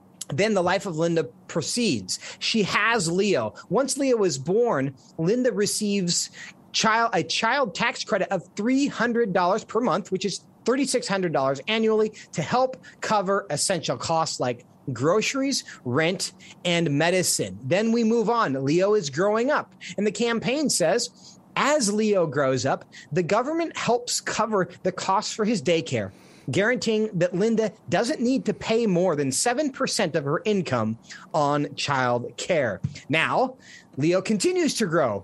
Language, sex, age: English, male, 30-49